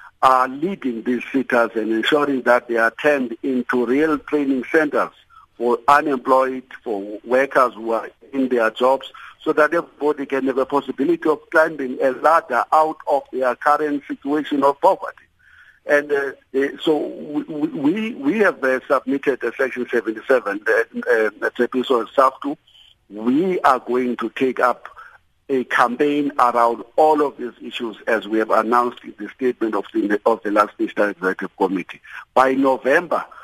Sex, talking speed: male, 160 wpm